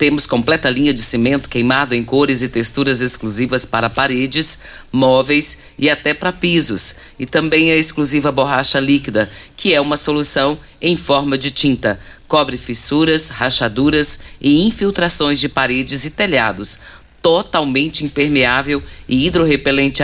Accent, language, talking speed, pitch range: Brazilian, Portuguese, 135 wpm, 130-150 Hz